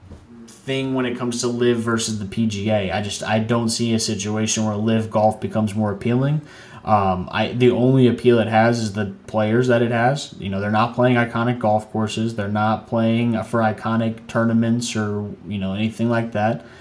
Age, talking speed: 20-39, 195 wpm